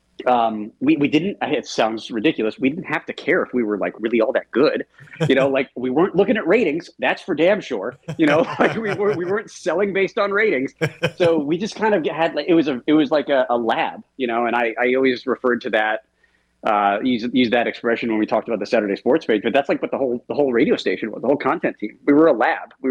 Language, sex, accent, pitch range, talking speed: English, male, American, 120-155 Hz, 265 wpm